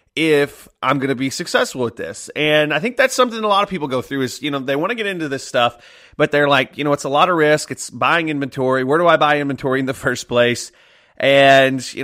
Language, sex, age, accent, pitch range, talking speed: English, male, 30-49, American, 125-155 Hz, 265 wpm